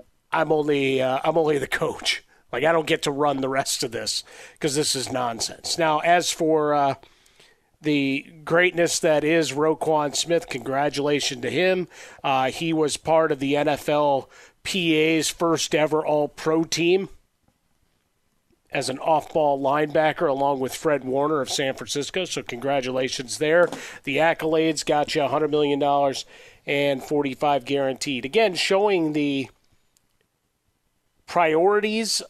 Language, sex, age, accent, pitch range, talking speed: English, male, 40-59, American, 135-160 Hz, 135 wpm